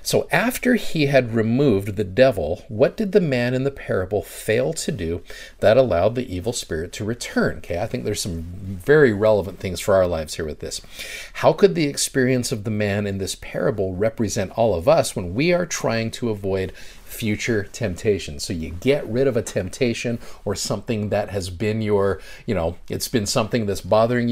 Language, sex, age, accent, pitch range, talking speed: English, male, 40-59, American, 100-140 Hz, 195 wpm